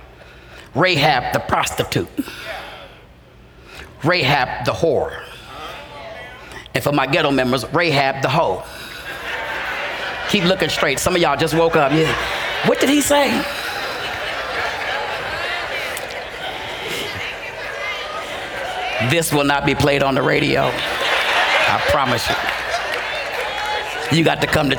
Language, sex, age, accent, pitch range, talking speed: English, male, 40-59, American, 135-165 Hz, 105 wpm